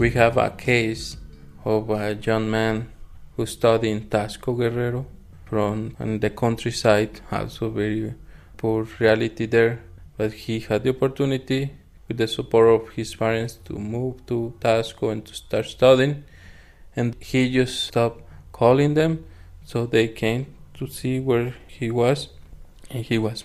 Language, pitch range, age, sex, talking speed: English, 105-120 Hz, 20-39, male, 150 wpm